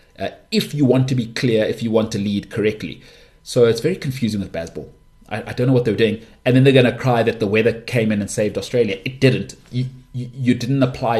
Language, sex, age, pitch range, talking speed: English, male, 30-49, 110-135 Hz, 250 wpm